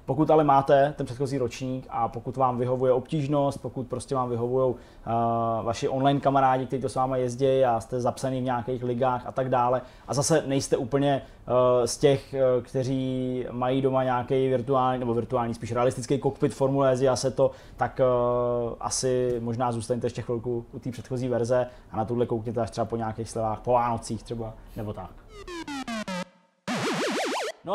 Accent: native